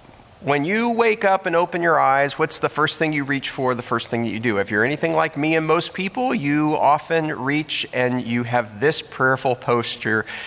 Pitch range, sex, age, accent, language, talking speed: 110-140 Hz, male, 30-49, American, English, 220 wpm